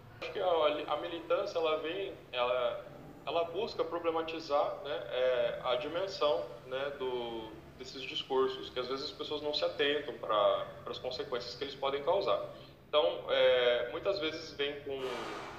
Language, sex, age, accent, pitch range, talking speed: Portuguese, male, 10-29, Brazilian, 125-170 Hz, 155 wpm